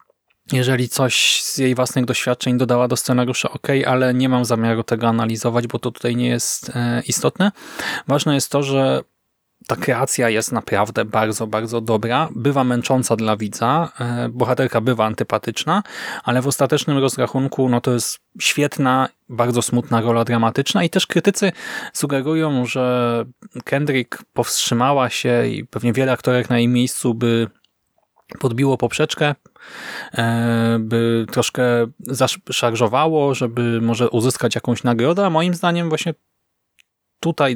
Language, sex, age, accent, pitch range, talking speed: Polish, male, 20-39, native, 115-130 Hz, 130 wpm